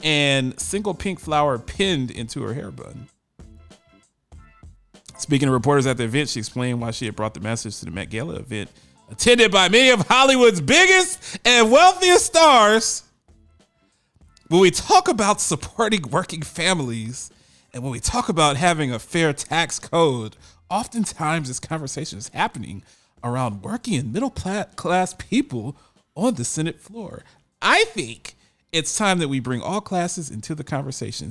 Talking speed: 155 wpm